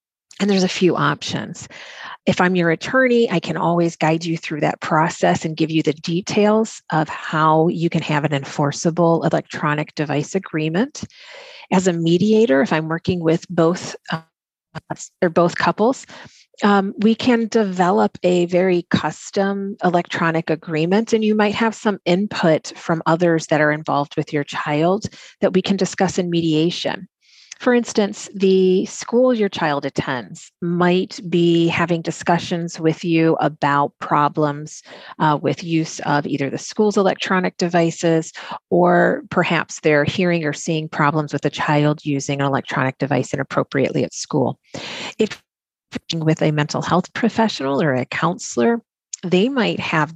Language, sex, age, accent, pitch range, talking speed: English, female, 40-59, American, 155-185 Hz, 155 wpm